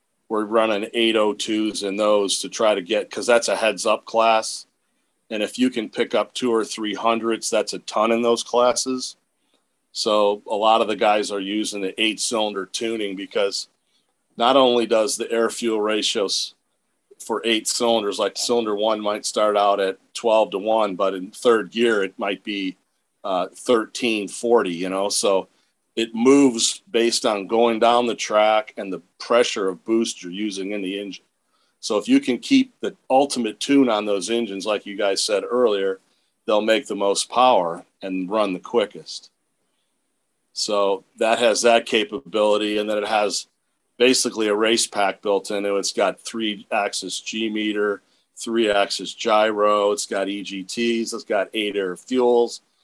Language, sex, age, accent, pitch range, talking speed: English, male, 40-59, American, 100-115 Hz, 170 wpm